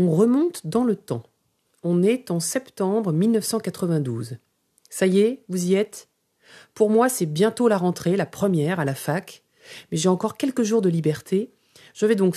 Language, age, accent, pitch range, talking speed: French, 40-59, French, 165-220 Hz, 180 wpm